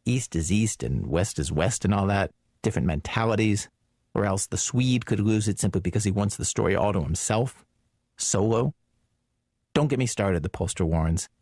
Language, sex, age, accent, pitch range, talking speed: English, male, 40-59, American, 90-120 Hz, 190 wpm